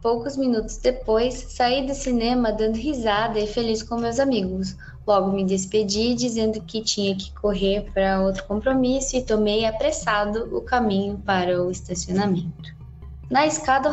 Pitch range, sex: 195-240 Hz, female